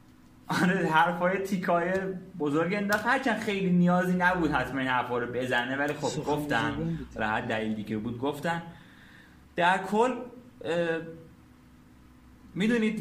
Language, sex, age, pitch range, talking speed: Persian, male, 30-49, 135-180 Hz, 125 wpm